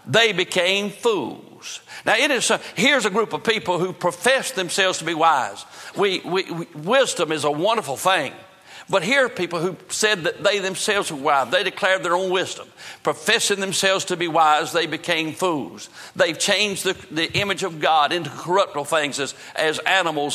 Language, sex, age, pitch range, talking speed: English, male, 60-79, 155-185 Hz, 185 wpm